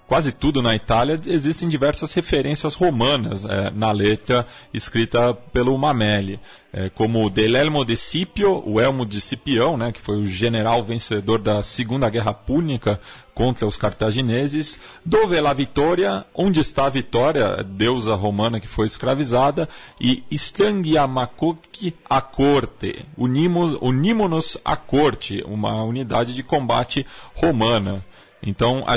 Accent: Brazilian